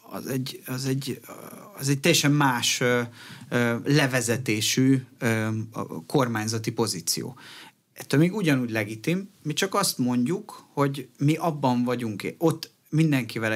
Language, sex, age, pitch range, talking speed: Hungarian, male, 30-49, 110-145 Hz, 110 wpm